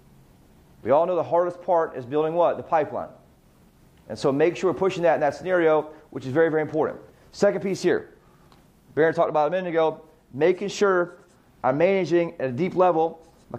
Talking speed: 200 wpm